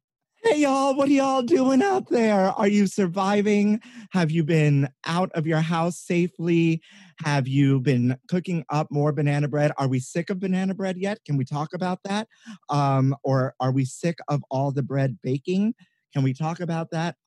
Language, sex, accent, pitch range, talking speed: English, male, American, 130-180 Hz, 190 wpm